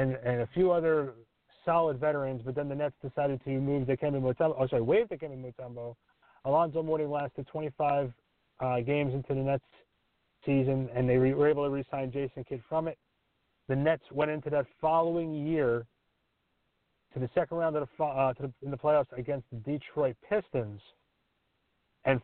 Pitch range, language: 135-165 Hz, English